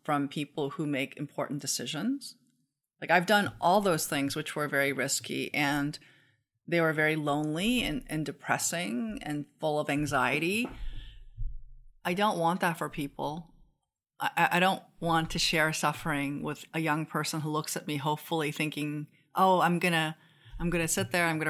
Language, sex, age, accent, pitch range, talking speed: English, female, 40-59, American, 145-175 Hz, 175 wpm